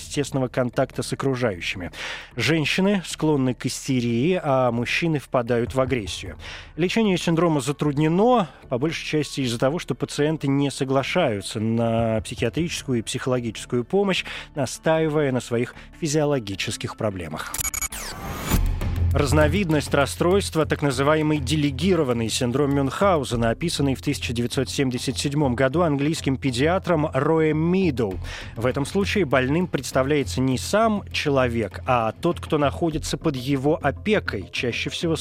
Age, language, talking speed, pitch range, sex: 20-39, Russian, 115 wpm, 125-160 Hz, male